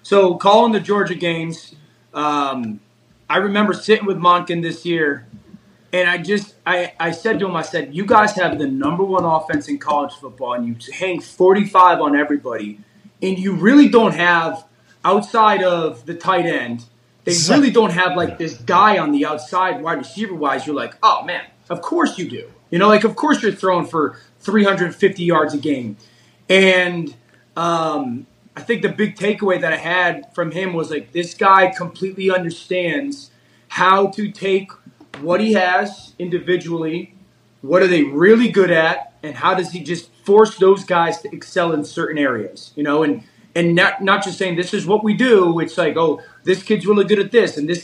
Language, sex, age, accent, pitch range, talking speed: English, male, 20-39, American, 165-200 Hz, 190 wpm